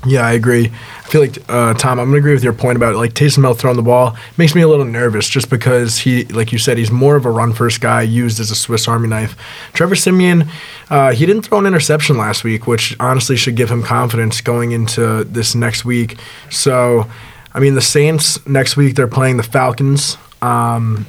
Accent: American